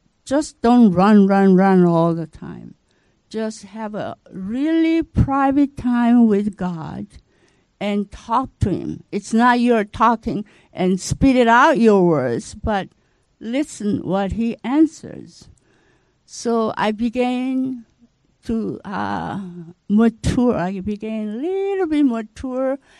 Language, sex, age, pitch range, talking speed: English, female, 60-79, 195-255 Hz, 125 wpm